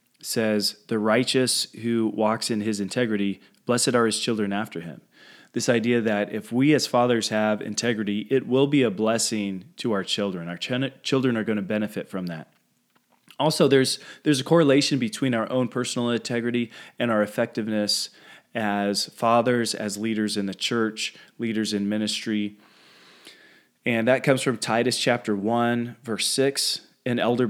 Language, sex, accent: English, male, American